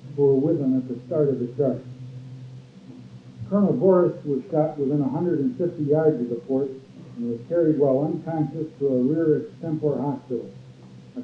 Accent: American